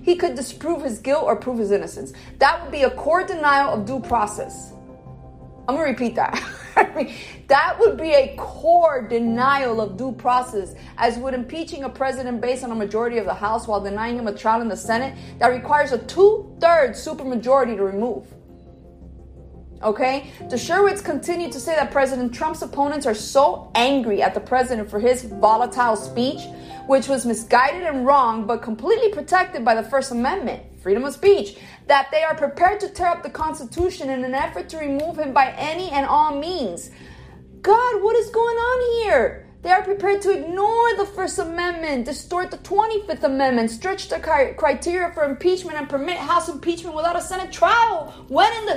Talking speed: 180 wpm